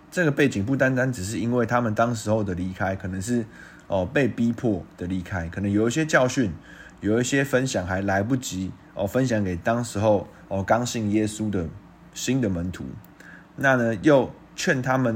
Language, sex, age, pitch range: Chinese, male, 20-39, 100-125 Hz